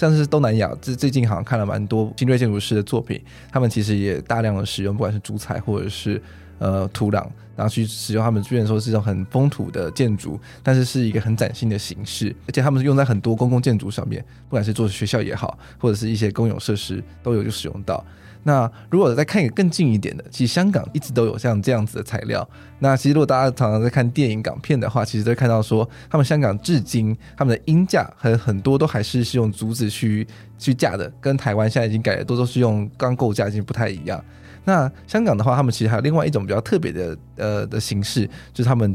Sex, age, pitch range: male, 20-39, 105-130 Hz